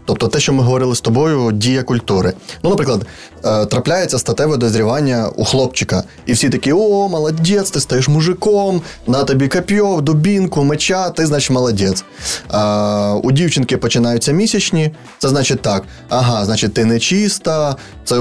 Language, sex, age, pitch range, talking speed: Ukrainian, male, 20-39, 115-145 Hz, 145 wpm